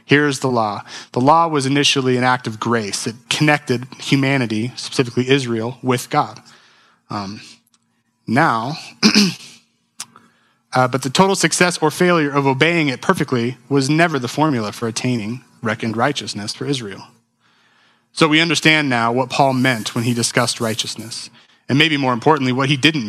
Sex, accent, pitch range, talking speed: male, American, 120-145 Hz, 155 wpm